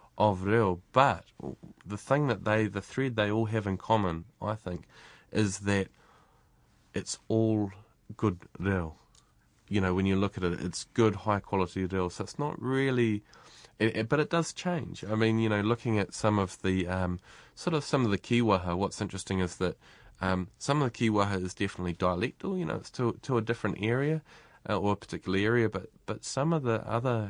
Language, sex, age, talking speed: English, male, 30-49, 195 wpm